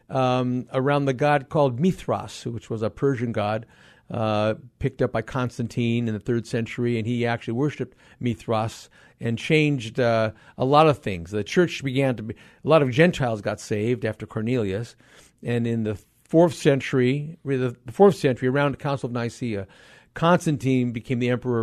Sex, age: male, 50-69